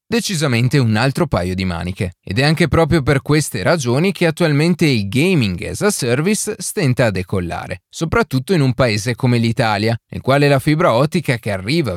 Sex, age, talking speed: male, 30-49, 180 wpm